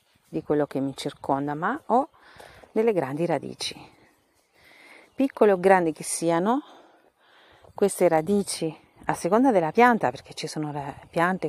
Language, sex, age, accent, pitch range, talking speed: Italian, female, 40-59, native, 150-200 Hz, 130 wpm